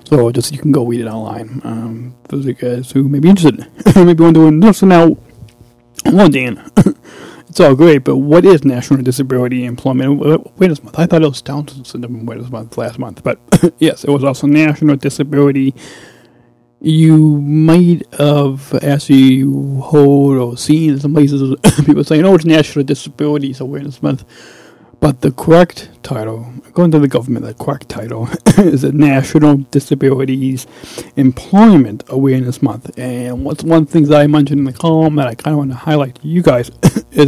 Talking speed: 180 wpm